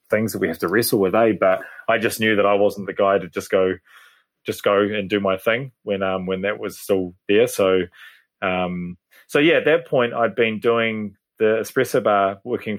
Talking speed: 220 wpm